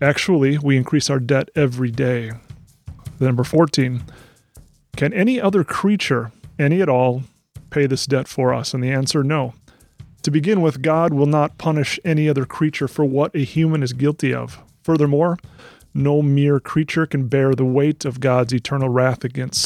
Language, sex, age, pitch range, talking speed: English, male, 30-49, 130-155 Hz, 170 wpm